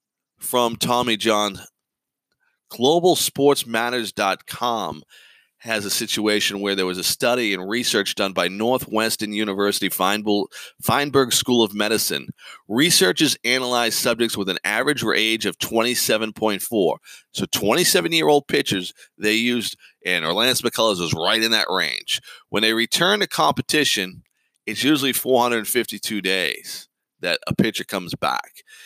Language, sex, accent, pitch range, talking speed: English, male, American, 105-140 Hz, 125 wpm